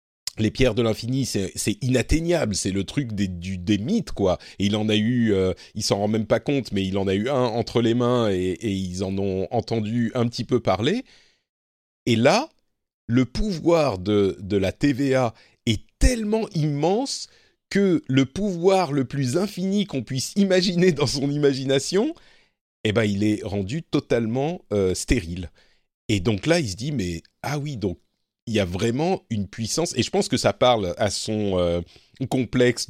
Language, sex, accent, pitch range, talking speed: French, male, French, 100-135 Hz, 190 wpm